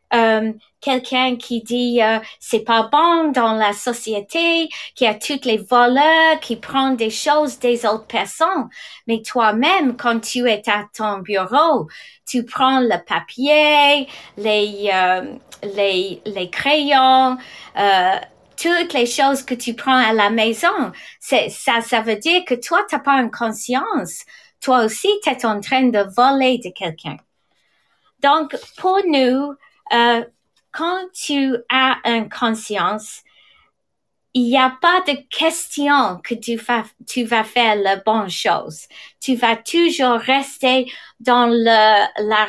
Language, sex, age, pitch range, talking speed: English, female, 30-49, 220-280 Hz, 145 wpm